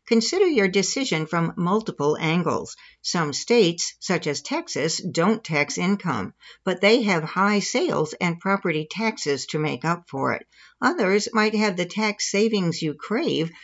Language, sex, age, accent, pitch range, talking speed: English, female, 60-79, American, 170-220 Hz, 155 wpm